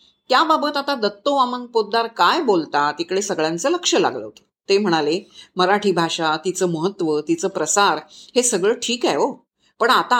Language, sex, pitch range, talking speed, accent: Marathi, female, 175-245 Hz, 155 wpm, native